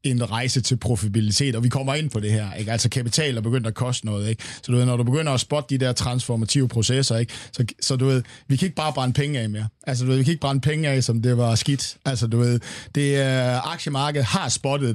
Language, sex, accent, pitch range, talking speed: Danish, male, native, 115-140 Hz, 260 wpm